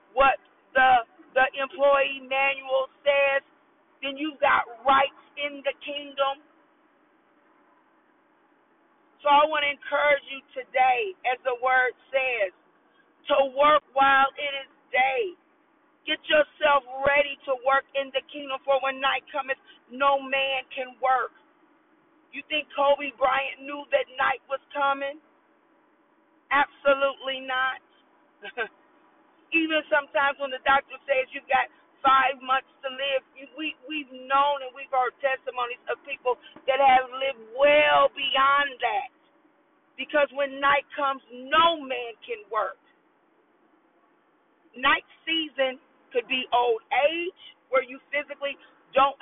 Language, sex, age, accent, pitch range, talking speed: English, female, 40-59, American, 265-300 Hz, 125 wpm